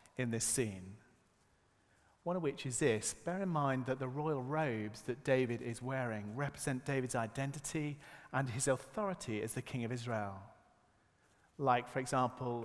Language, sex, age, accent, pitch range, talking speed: English, male, 40-59, British, 110-145 Hz, 155 wpm